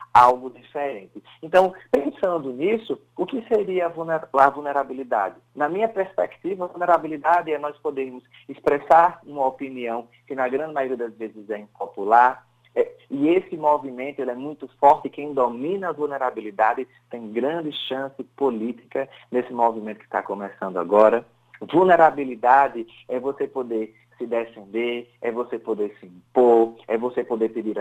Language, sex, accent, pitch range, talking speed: Portuguese, male, Brazilian, 115-140 Hz, 140 wpm